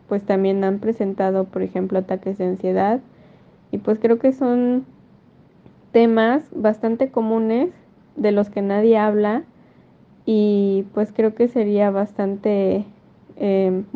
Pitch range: 185-220 Hz